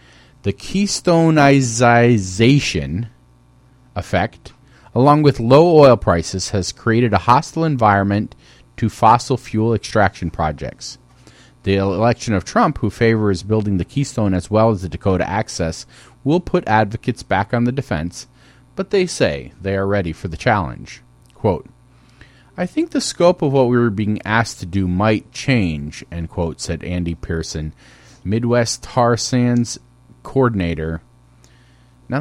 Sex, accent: male, American